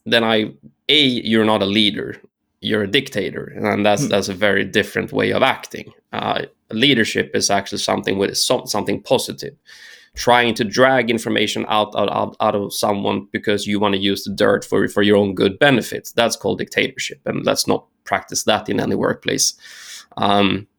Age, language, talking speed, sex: 20-39, English, 180 wpm, male